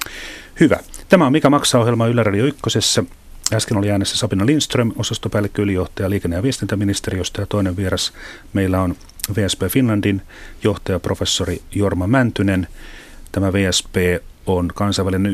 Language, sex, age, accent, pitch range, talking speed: Finnish, male, 40-59, native, 90-110 Hz, 120 wpm